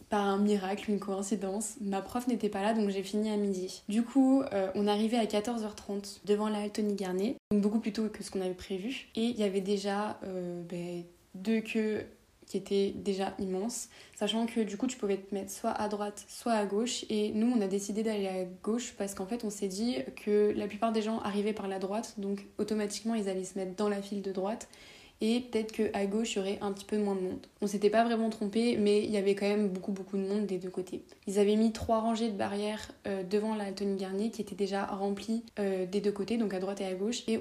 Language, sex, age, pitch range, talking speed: French, female, 20-39, 195-220 Hz, 245 wpm